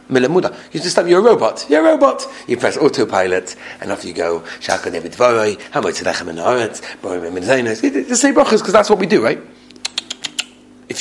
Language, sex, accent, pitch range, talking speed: English, male, British, 225-280 Hz, 125 wpm